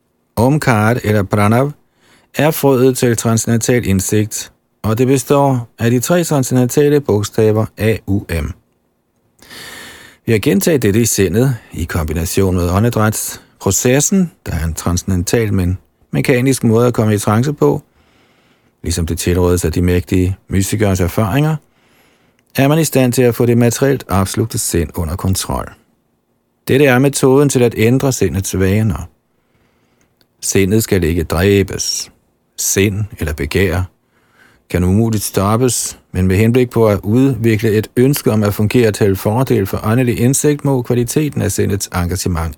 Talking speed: 140 wpm